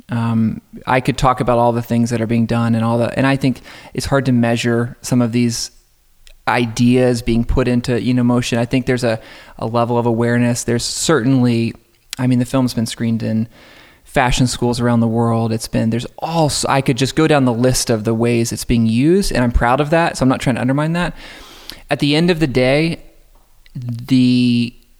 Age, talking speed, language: 20-39, 215 wpm, English